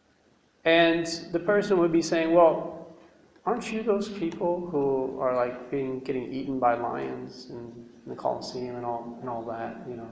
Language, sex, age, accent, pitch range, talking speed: English, male, 30-49, American, 130-180 Hz, 170 wpm